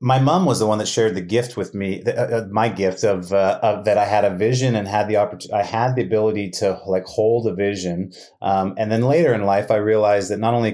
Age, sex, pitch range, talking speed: 30-49, male, 100-115 Hz, 255 wpm